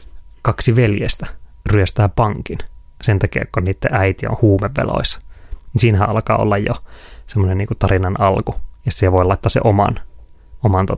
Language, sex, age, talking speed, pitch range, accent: Finnish, male, 20-39, 135 wpm, 95-115 Hz, native